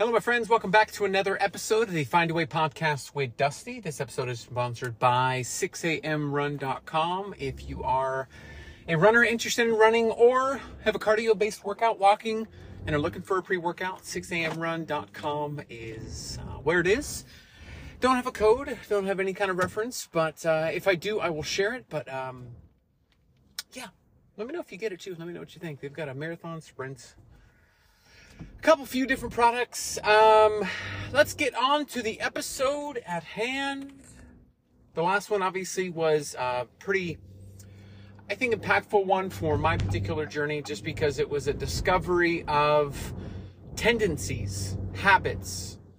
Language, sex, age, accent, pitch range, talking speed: English, male, 30-49, American, 125-210 Hz, 165 wpm